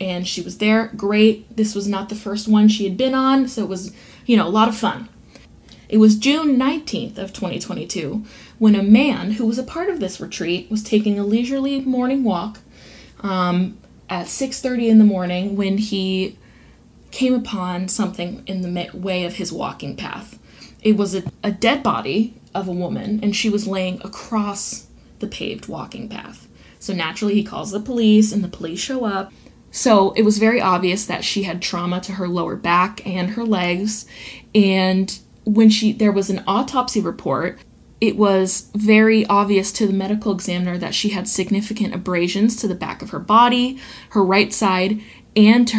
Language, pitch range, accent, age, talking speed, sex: English, 190-220 Hz, American, 10-29, 185 wpm, female